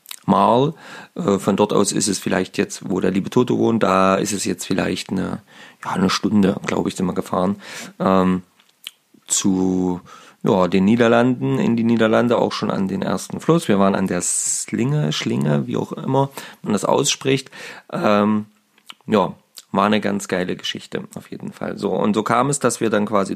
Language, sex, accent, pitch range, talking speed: German, male, German, 95-125 Hz, 185 wpm